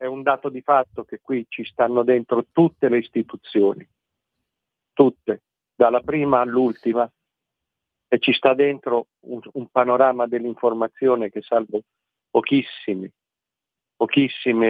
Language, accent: Italian, native